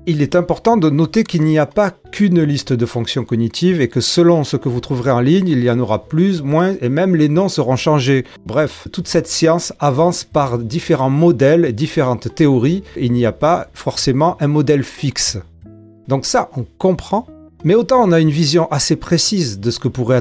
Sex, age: male, 40-59